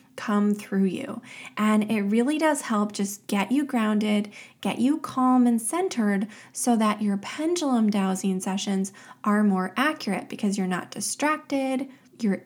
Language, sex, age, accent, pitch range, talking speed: English, female, 20-39, American, 200-250 Hz, 150 wpm